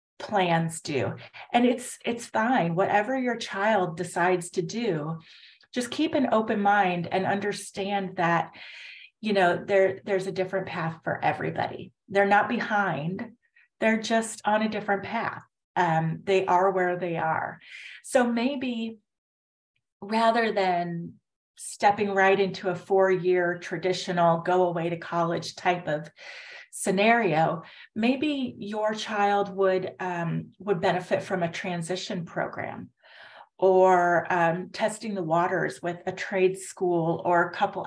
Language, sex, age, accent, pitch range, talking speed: English, female, 30-49, American, 175-220 Hz, 135 wpm